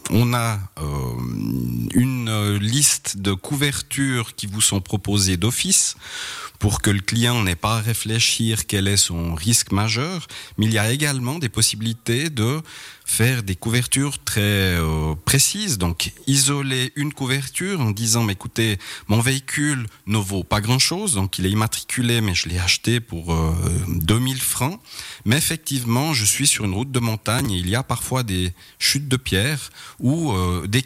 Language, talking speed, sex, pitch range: French, 165 wpm, male, 95-130 Hz